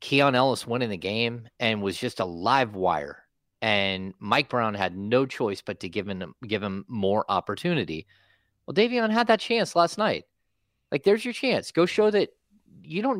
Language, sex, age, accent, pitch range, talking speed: English, male, 30-49, American, 95-135 Hz, 185 wpm